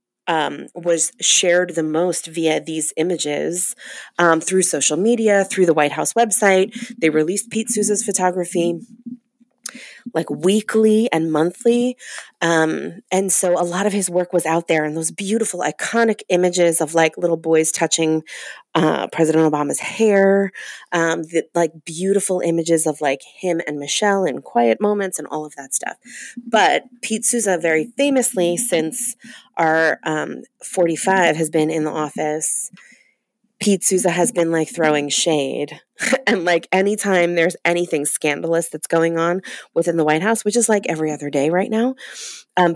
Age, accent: 30-49, American